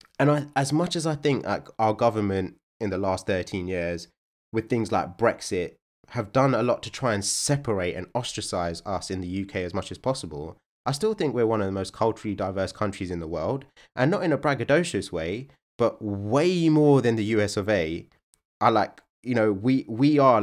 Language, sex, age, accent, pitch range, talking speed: English, male, 20-39, British, 95-130 Hz, 210 wpm